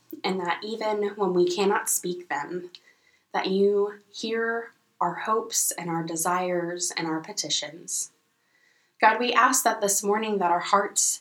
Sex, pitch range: female, 175-210 Hz